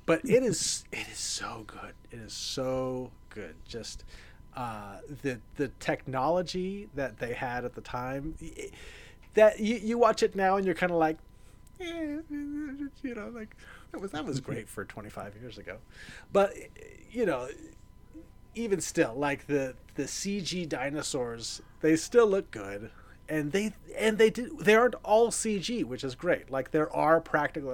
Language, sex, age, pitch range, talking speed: English, male, 30-49, 120-165 Hz, 165 wpm